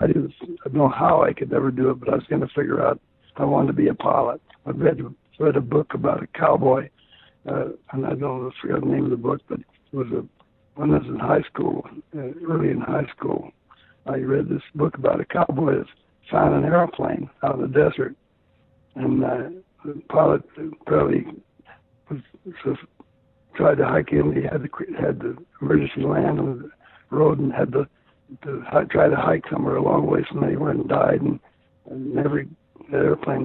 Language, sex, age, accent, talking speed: English, male, 60-79, American, 195 wpm